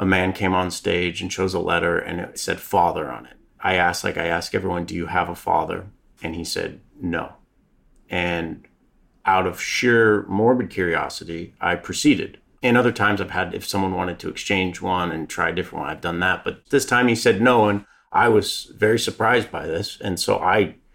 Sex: male